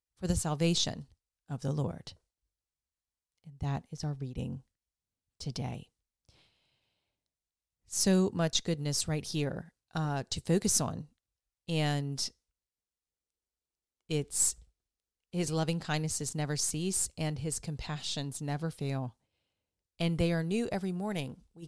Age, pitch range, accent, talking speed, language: 40-59, 95-160 Hz, American, 110 wpm, English